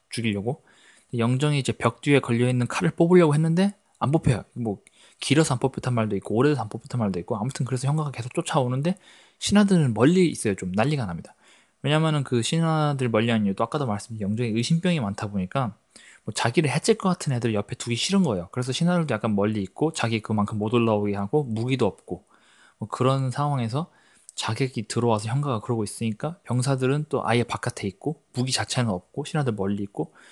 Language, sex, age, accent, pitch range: Korean, male, 20-39, native, 105-145 Hz